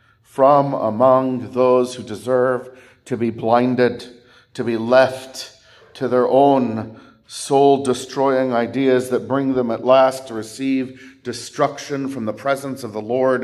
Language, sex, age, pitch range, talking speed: English, male, 40-59, 115-135 Hz, 135 wpm